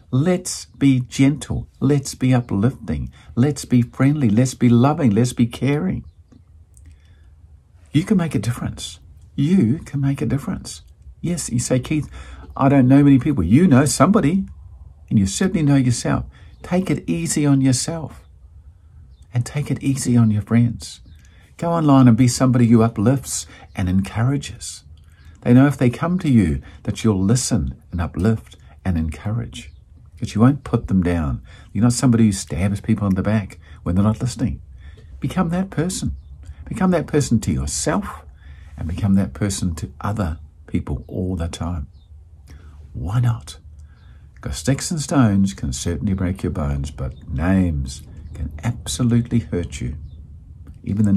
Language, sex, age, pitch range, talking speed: English, male, 50-69, 80-125 Hz, 155 wpm